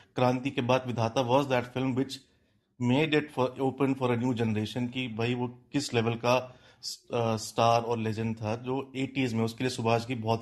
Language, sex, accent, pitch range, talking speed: Hindi, male, native, 115-135 Hz, 195 wpm